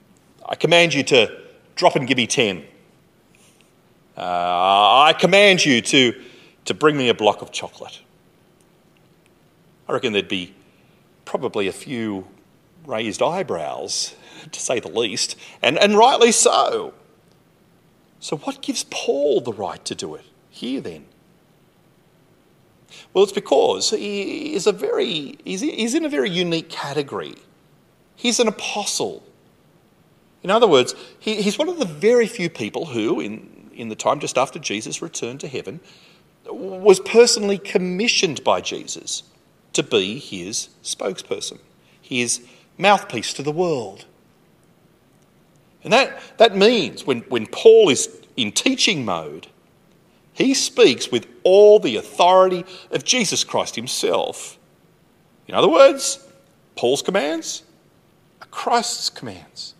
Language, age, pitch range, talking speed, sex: English, 30-49, 170-275 Hz, 130 wpm, male